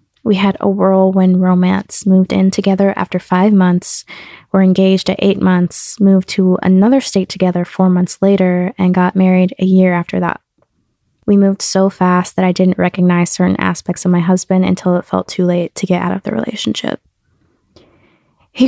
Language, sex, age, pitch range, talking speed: English, female, 20-39, 180-195 Hz, 180 wpm